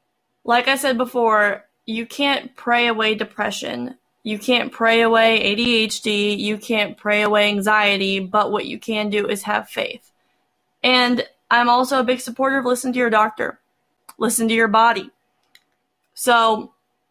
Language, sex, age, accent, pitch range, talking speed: English, female, 20-39, American, 210-245 Hz, 150 wpm